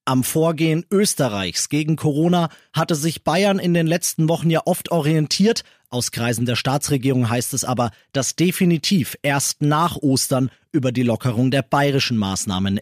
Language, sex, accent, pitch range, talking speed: German, male, German, 130-175 Hz, 155 wpm